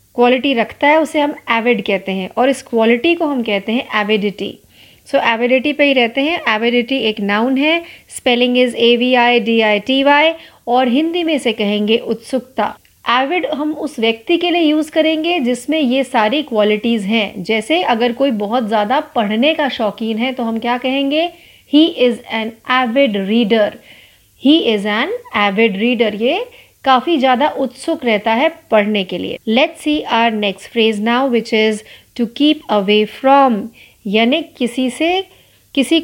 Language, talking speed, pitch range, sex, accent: Marathi, 150 wpm, 225-285 Hz, female, native